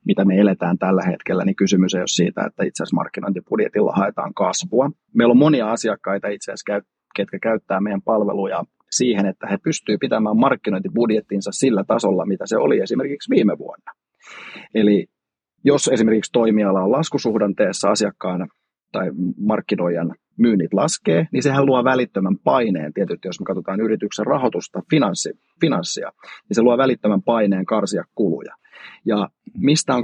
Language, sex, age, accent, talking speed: Finnish, male, 30-49, native, 145 wpm